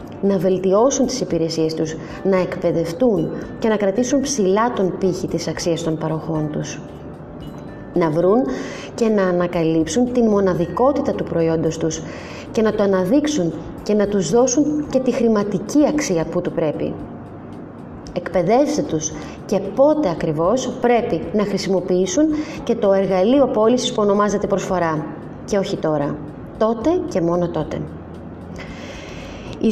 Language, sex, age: Greek, female, 20-39